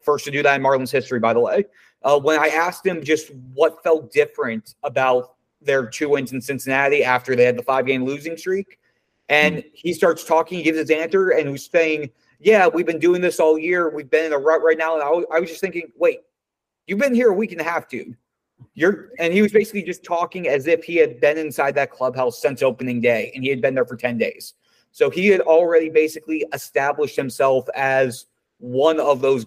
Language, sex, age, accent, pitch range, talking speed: English, male, 30-49, American, 135-165 Hz, 220 wpm